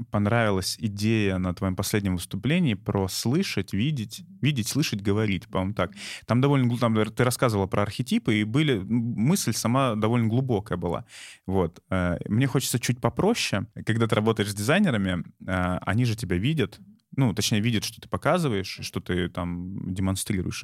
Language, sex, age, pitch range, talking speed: Russian, male, 20-39, 95-125 Hz, 140 wpm